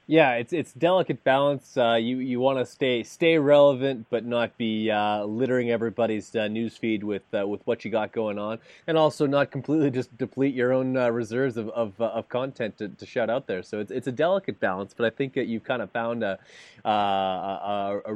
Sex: male